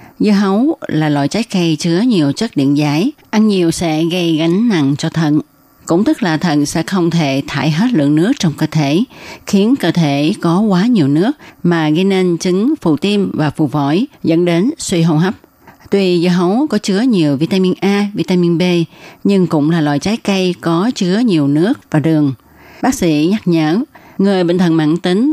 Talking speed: 200 wpm